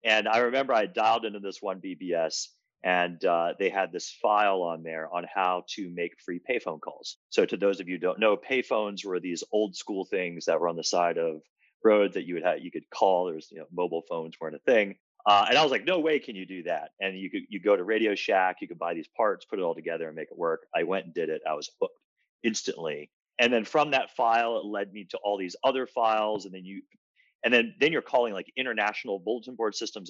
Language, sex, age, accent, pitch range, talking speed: English, male, 30-49, American, 90-120 Hz, 255 wpm